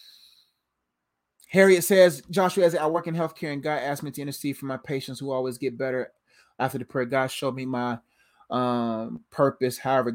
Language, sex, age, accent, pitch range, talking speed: English, male, 30-49, American, 135-170 Hz, 185 wpm